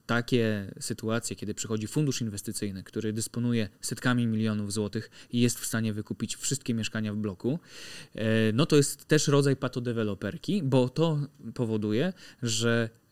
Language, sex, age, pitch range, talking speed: Polish, male, 20-39, 110-130 Hz, 135 wpm